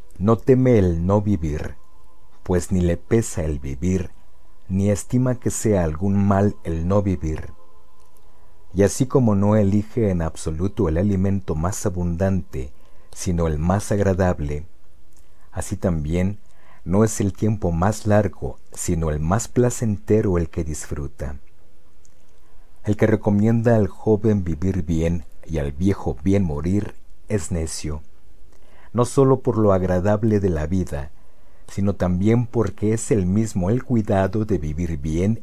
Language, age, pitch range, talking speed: Spanish, 50-69, 80-105 Hz, 140 wpm